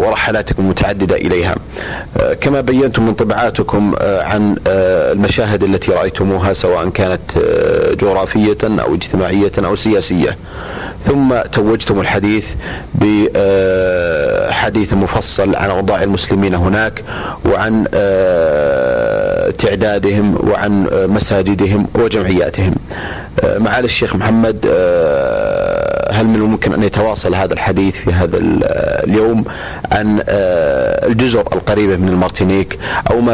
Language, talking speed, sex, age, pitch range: Arabic, 95 wpm, male, 40-59, 95-110 Hz